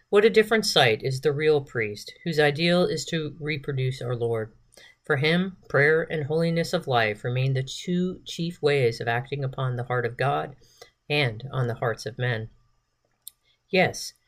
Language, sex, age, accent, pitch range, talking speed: English, female, 50-69, American, 125-160 Hz, 170 wpm